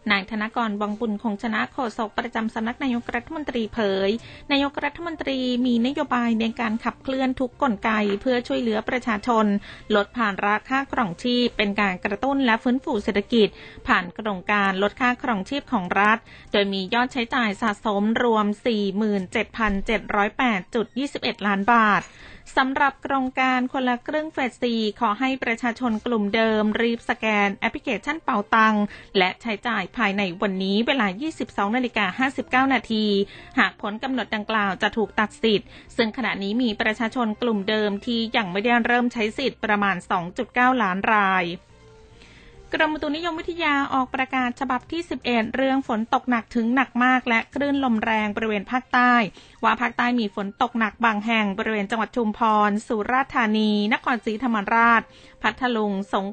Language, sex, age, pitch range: Thai, female, 20-39, 210-250 Hz